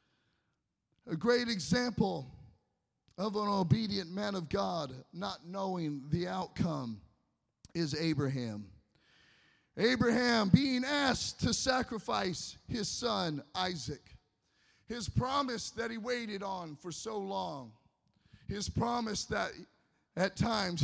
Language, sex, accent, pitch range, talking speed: English, male, American, 150-225 Hz, 105 wpm